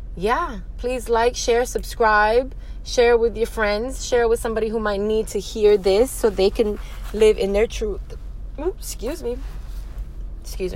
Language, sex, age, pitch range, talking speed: English, female, 20-39, 170-215 Hz, 160 wpm